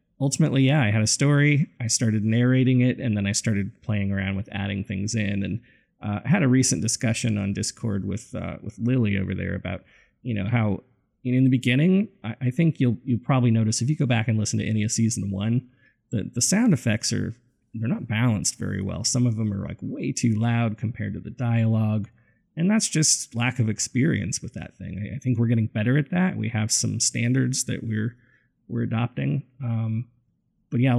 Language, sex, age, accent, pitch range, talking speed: English, male, 30-49, American, 110-125 Hz, 215 wpm